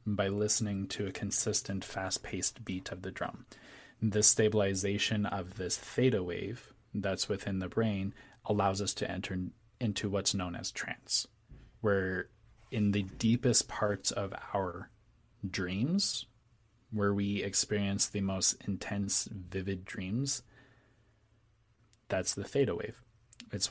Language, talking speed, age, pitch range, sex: English, 125 wpm, 20-39, 95-115 Hz, male